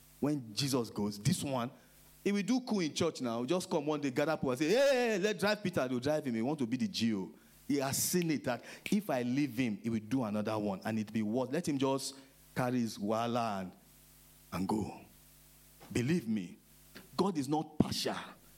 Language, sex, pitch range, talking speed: English, male, 125-210 Hz, 225 wpm